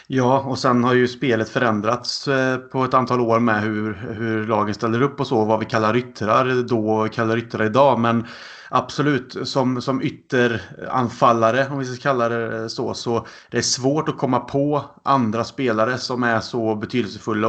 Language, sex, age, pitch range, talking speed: Swedish, male, 30-49, 115-125 Hz, 180 wpm